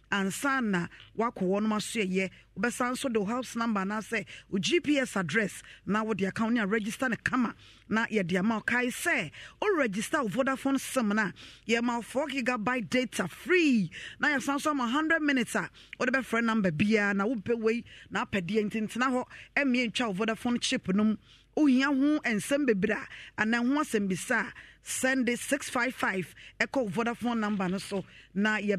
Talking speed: 155 wpm